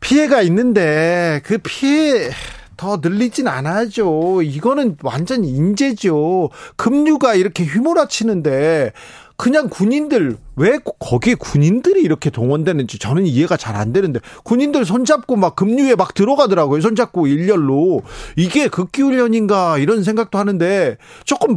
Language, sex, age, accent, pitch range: Korean, male, 40-59, native, 150-205 Hz